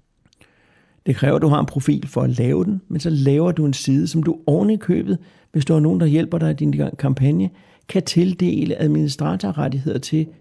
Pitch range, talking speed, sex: 135-165 Hz, 210 wpm, male